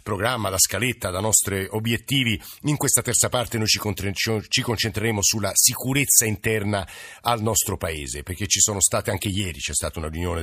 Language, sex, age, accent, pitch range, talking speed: Italian, male, 50-69, native, 100-120 Hz, 165 wpm